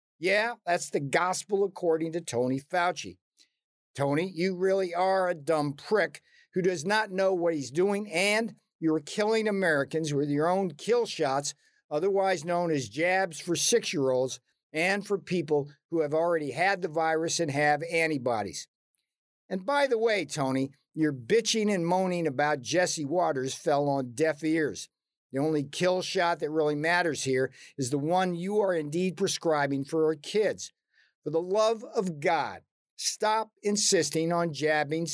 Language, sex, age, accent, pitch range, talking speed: English, male, 50-69, American, 150-190 Hz, 155 wpm